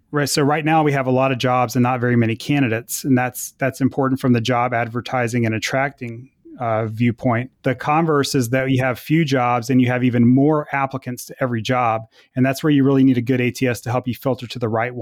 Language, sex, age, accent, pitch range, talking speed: English, male, 30-49, American, 125-140 Hz, 240 wpm